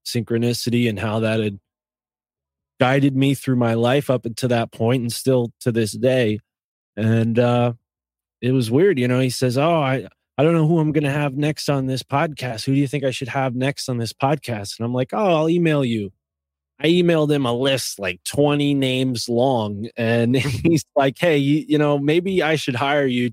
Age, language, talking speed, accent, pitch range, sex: 20-39, English, 210 wpm, American, 110-135 Hz, male